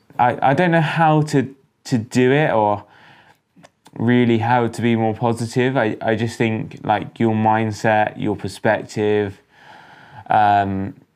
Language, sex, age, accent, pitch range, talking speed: English, male, 10-29, British, 100-125 Hz, 140 wpm